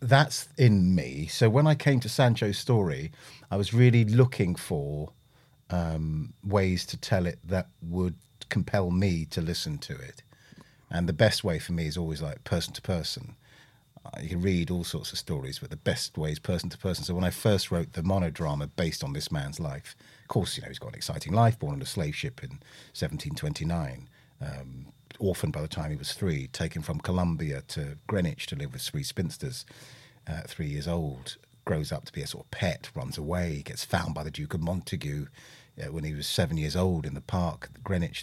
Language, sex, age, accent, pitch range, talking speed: English, male, 40-59, British, 80-120 Hz, 210 wpm